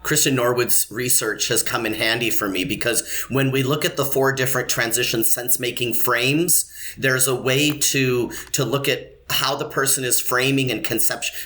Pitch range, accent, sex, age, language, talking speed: 115-135 Hz, American, male, 30-49, English, 185 wpm